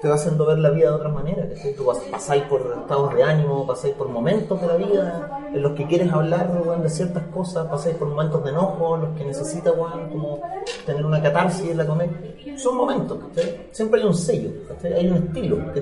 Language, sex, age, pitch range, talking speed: Spanish, male, 30-49, 155-205 Hz, 225 wpm